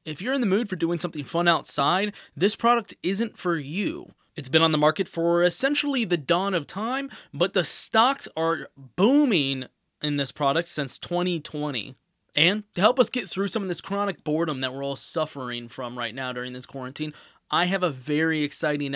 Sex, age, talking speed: male, 20-39, 195 wpm